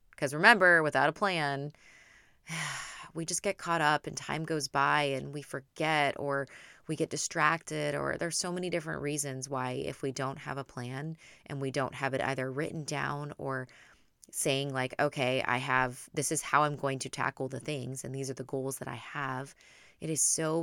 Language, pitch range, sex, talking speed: English, 135-160 Hz, female, 200 wpm